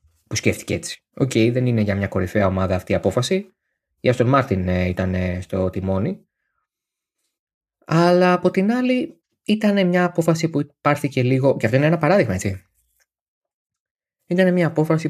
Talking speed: 150 wpm